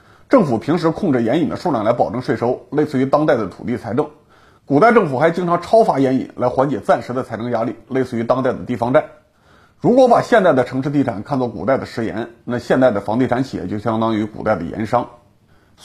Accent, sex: Polish, male